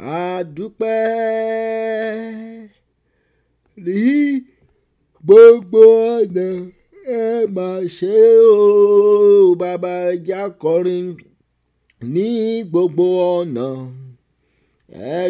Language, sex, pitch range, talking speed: English, male, 175-225 Hz, 55 wpm